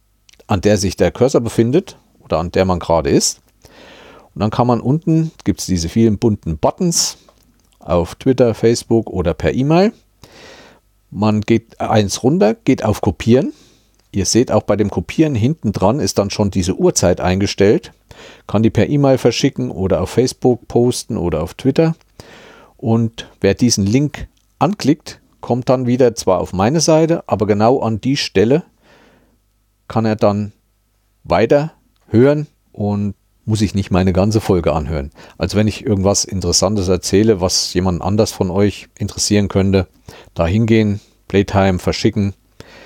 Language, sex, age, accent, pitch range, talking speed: German, male, 50-69, German, 95-115 Hz, 155 wpm